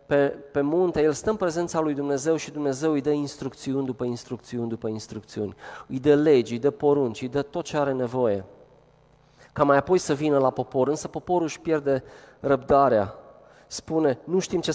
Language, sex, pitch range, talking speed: Romanian, male, 130-160 Hz, 185 wpm